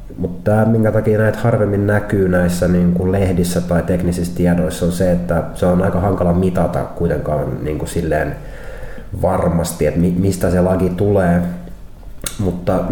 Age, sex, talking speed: 30-49, male, 155 wpm